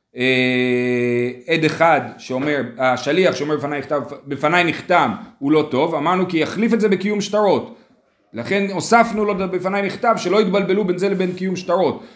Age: 30-49